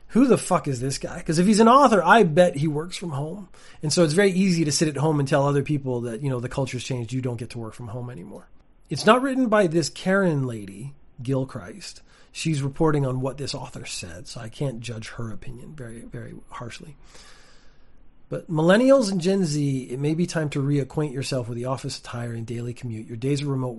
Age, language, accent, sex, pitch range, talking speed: 30-49, English, American, male, 125-160 Hz, 230 wpm